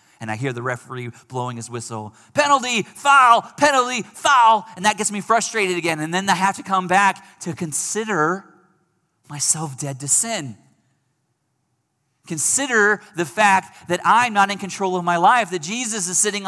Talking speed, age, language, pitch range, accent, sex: 170 wpm, 30-49, English, 115-165 Hz, American, male